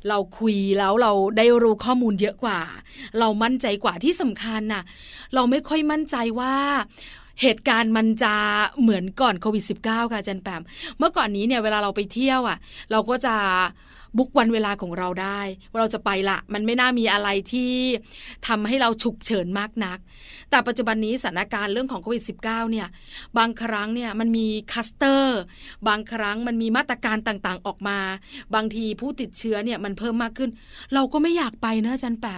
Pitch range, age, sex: 215-260 Hz, 20-39, female